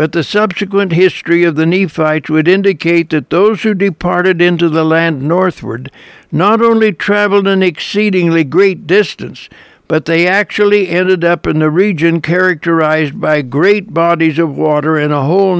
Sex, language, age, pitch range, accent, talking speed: male, English, 60-79, 160-185 Hz, American, 160 wpm